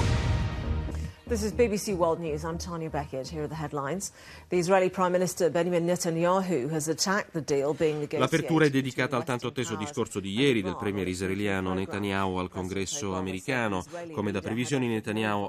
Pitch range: 90-125 Hz